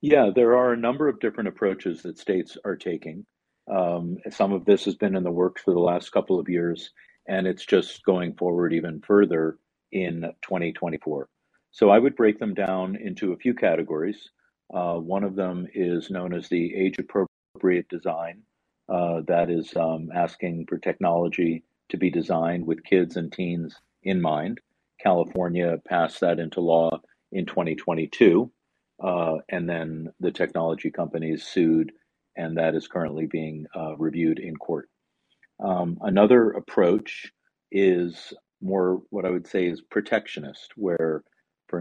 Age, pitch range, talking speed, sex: 50-69, 80-95 Hz, 155 wpm, male